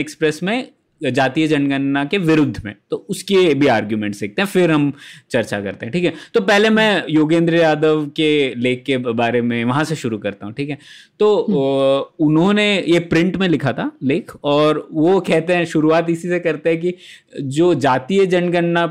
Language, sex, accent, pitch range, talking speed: Hindi, male, native, 140-180 Hz, 65 wpm